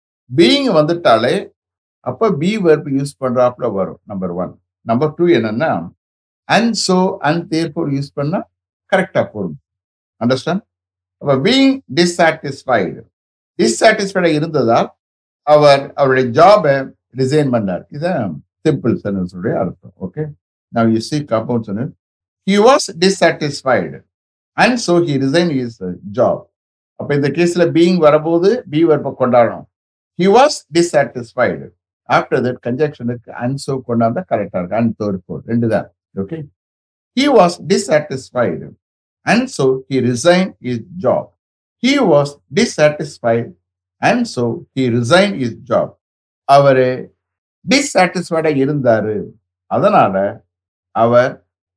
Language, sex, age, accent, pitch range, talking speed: English, male, 60-79, Indian, 100-160 Hz, 105 wpm